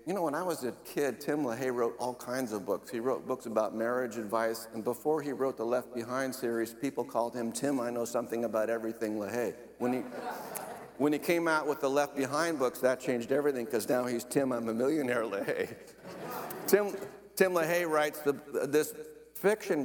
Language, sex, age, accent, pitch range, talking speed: English, male, 60-79, American, 125-150 Hz, 205 wpm